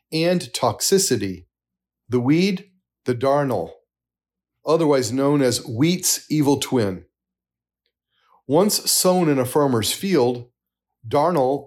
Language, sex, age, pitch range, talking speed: English, male, 40-59, 110-155 Hz, 100 wpm